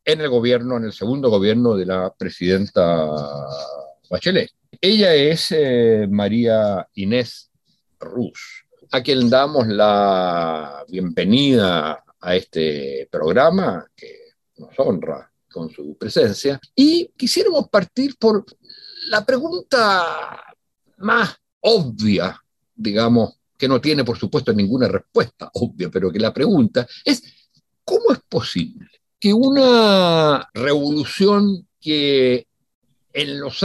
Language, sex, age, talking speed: Spanish, male, 50-69, 110 wpm